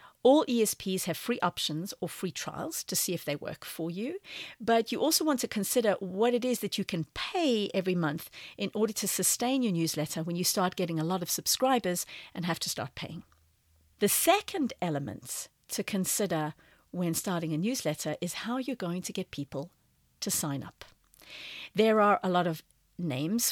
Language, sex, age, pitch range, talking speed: English, female, 50-69, 170-225 Hz, 190 wpm